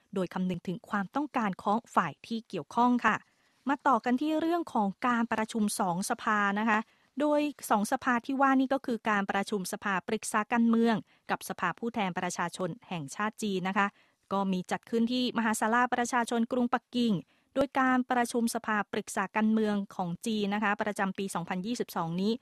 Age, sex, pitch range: 20-39, female, 195-235 Hz